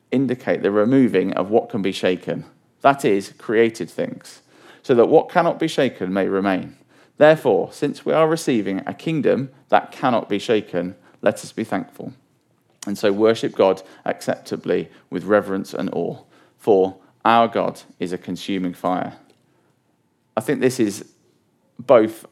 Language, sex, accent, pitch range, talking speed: English, male, British, 95-130 Hz, 150 wpm